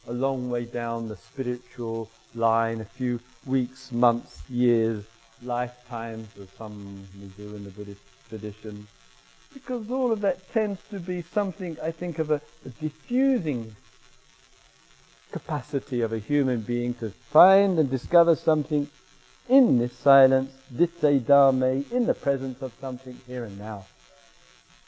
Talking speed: 140 wpm